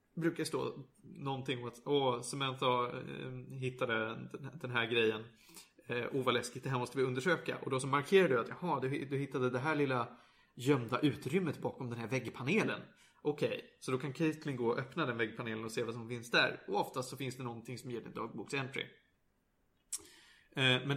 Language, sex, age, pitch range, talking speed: Swedish, male, 30-49, 125-165 Hz, 185 wpm